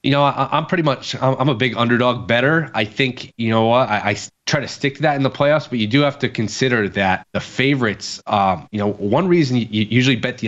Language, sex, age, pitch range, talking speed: English, male, 20-39, 105-130 Hz, 250 wpm